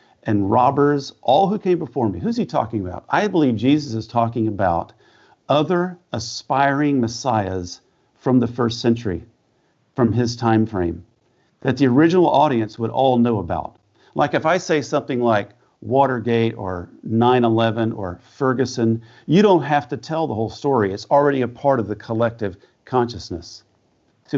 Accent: American